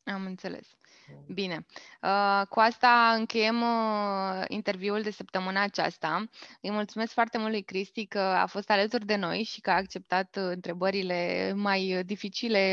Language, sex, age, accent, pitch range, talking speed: Romanian, female, 20-39, native, 195-235 Hz, 135 wpm